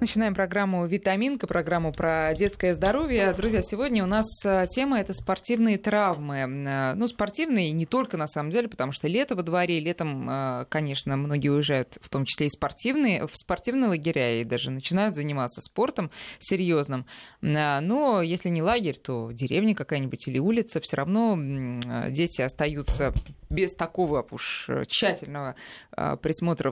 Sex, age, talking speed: female, 20-39, 145 wpm